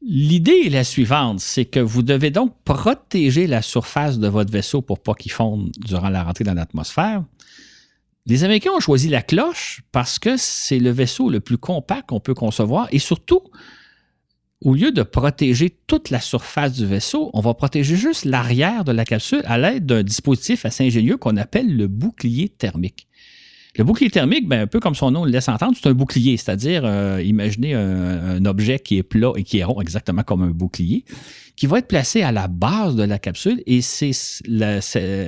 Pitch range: 105-145 Hz